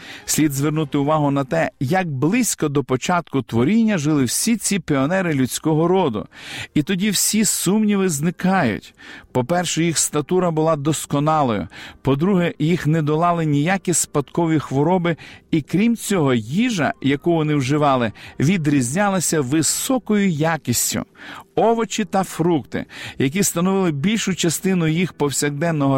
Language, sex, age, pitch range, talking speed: Ukrainian, male, 50-69, 145-195 Hz, 120 wpm